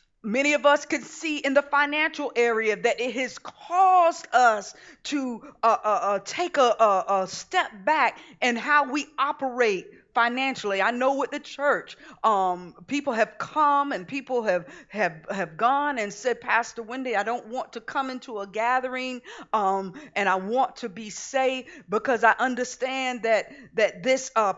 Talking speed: 170 wpm